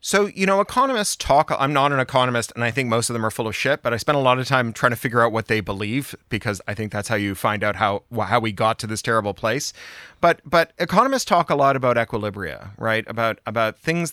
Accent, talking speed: American, 260 wpm